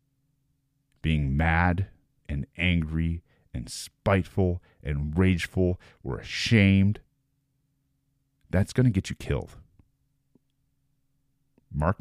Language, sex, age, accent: English, male, 40-59, American